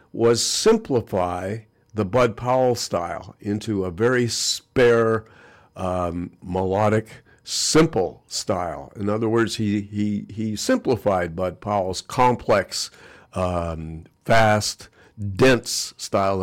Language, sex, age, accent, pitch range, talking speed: English, male, 60-79, American, 95-115 Hz, 100 wpm